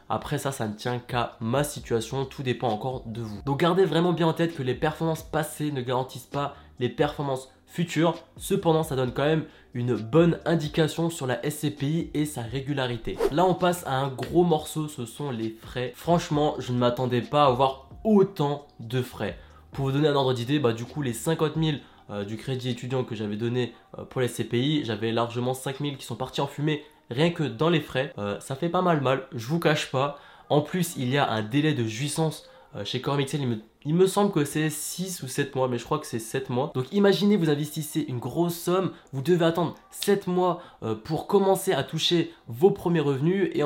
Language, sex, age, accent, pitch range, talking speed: French, male, 20-39, French, 125-165 Hz, 220 wpm